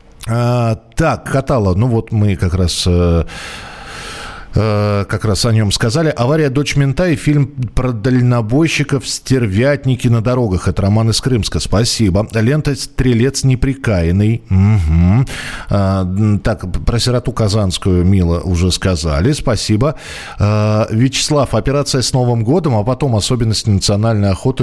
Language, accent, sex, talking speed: Russian, native, male, 120 wpm